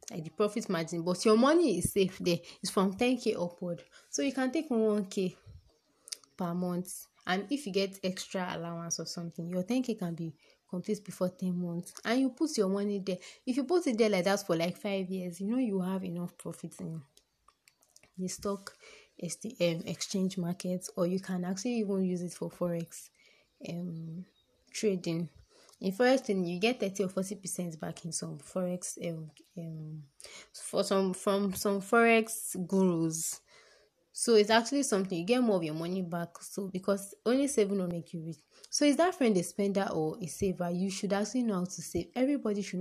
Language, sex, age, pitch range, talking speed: English, female, 20-39, 175-210 Hz, 190 wpm